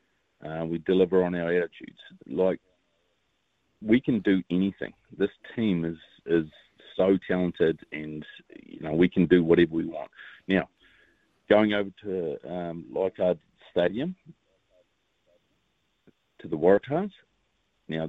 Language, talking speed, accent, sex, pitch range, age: English, 125 wpm, Australian, male, 80-95 Hz, 40-59